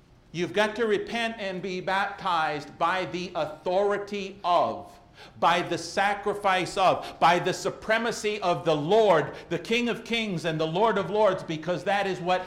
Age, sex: 50-69, male